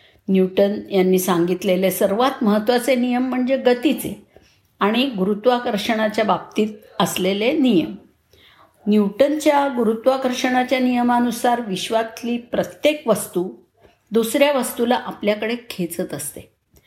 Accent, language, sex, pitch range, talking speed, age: native, Marathi, female, 200-260 Hz, 85 wpm, 50-69